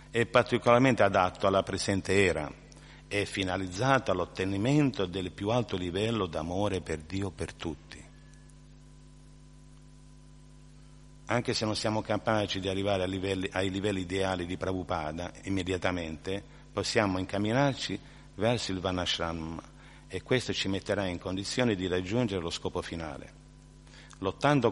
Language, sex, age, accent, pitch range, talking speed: Italian, male, 50-69, native, 90-105 Hz, 120 wpm